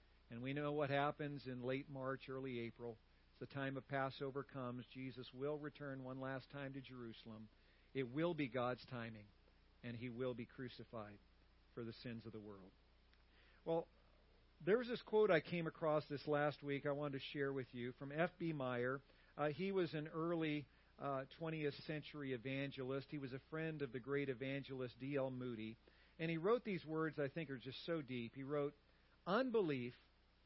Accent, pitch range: American, 125-160 Hz